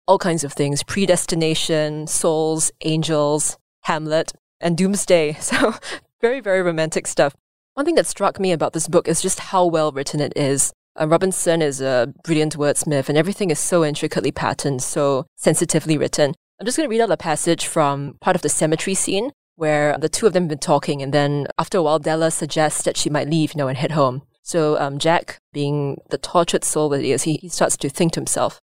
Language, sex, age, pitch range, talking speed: English, female, 20-39, 150-180 Hz, 205 wpm